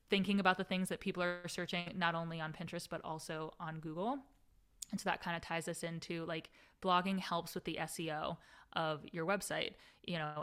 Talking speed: 200 wpm